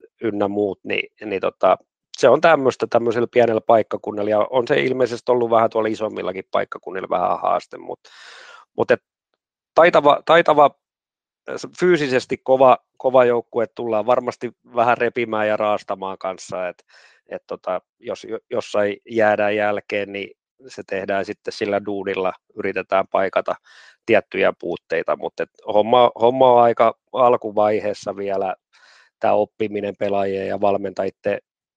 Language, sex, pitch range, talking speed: Finnish, male, 100-115 Hz, 125 wpm